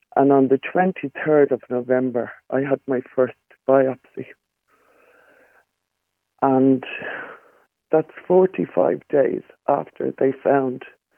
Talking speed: 95 wpm